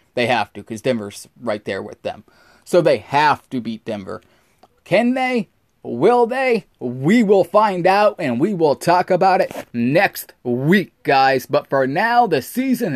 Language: English